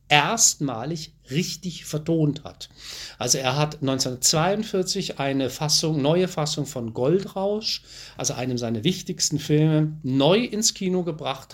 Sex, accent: male, German